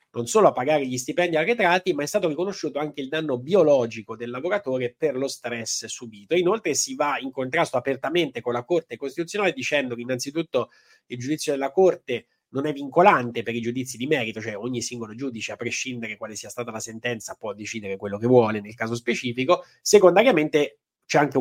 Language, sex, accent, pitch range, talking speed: Italian, male, native, 115-145 Hz, 190 wpm